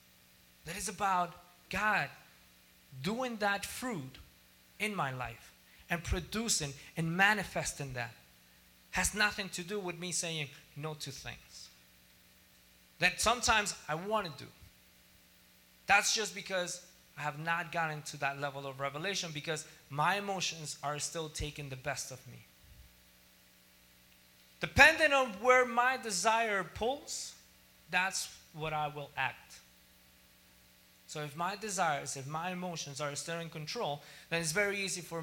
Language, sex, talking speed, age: English, male, 135 wpm, 30-49